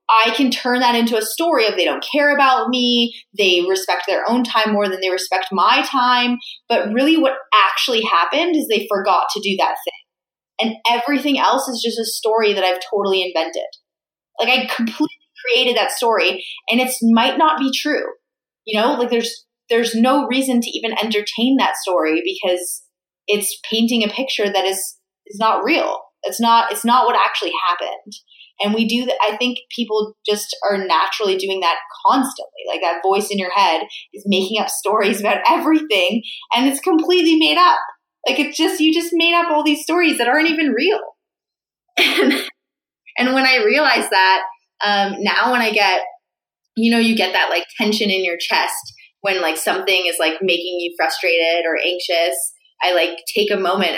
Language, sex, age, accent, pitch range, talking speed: English, female, 20-39, American, 190-260 Hz, 185 wpm